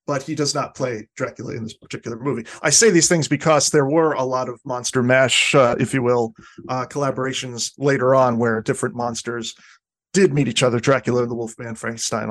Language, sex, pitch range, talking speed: English, male, 120-145 Hz, 205 wpm